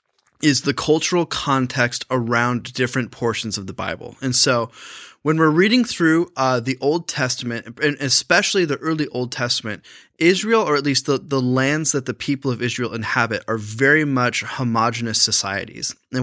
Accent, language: American, English